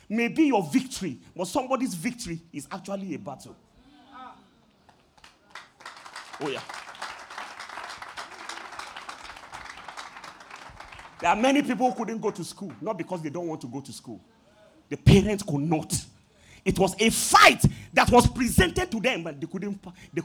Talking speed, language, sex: 140 wpm, English, male